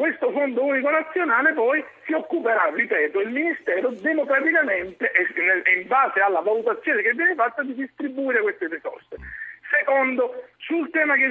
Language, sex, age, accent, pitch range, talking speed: Italian, male, 50-69, native, 220-315 Hz, 145 wpm